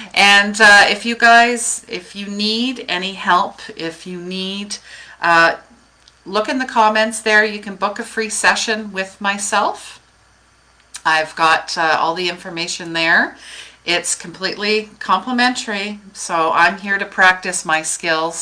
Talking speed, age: 145 wpm, 40-59